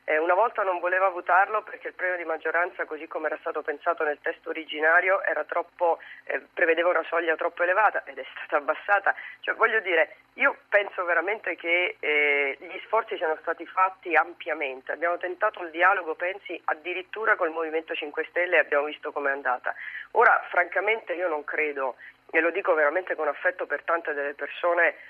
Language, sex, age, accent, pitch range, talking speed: Italian, female, 40-59, native, 150-180 Hz, 175 wpm